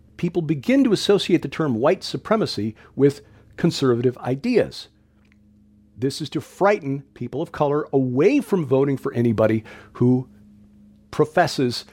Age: 50-69